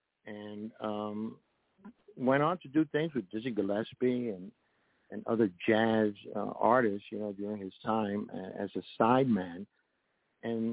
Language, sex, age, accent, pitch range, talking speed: English, male, 60-79, American, 100-125 Hz, 140 wpm